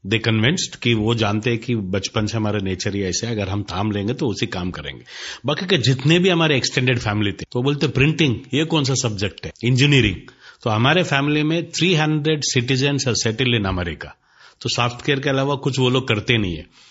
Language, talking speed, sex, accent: Hindi, 210 wpm, male, native